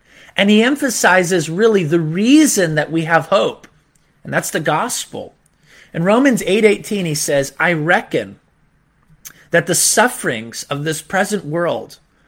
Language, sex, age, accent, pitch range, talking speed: English, male, 30-49, American, 170-230 Hz, 135 wpm